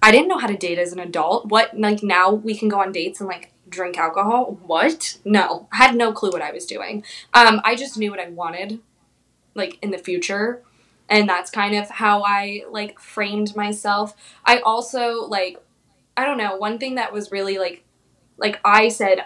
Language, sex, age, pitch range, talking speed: English, female, 20-39, 185-215 Hz, 205 wpm